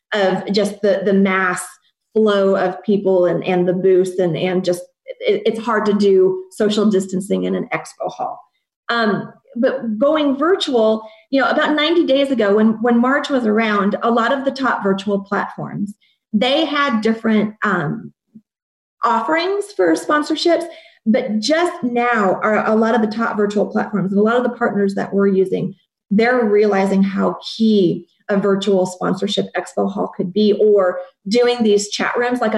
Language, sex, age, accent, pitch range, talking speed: English, female, 30-49, American, 195-240 Hz, 165 wpm